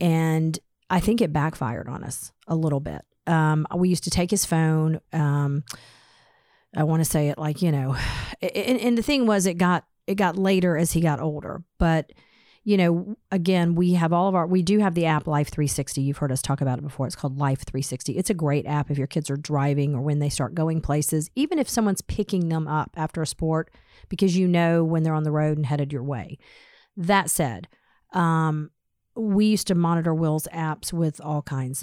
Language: English